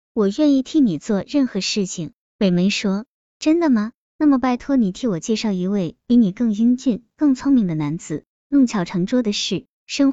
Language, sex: Chinese, male